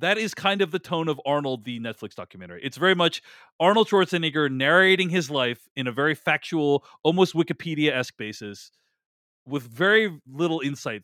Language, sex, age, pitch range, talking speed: English, male, 30-49, 135-185 Hz, 170 wpm